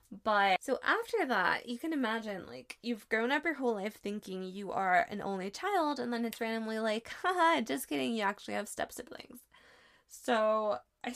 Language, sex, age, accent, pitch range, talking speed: English, female, 10-29, American, 190-240 Hz, 185 wpm